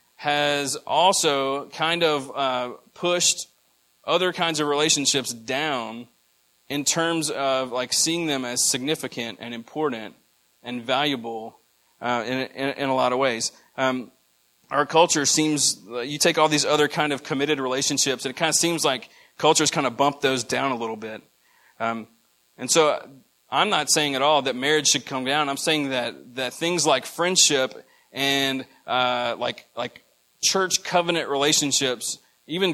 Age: 30-49